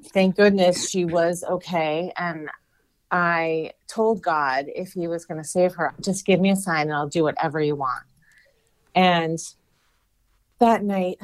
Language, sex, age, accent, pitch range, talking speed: English, female, 30-49, American, 160-190 Hz, 160 wpm